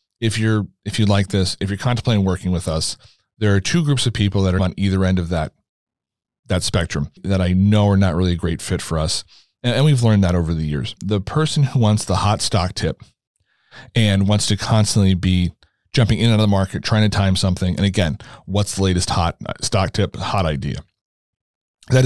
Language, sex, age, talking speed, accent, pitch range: English, male, 40-59, 220 wpm, American, 90-110 Hz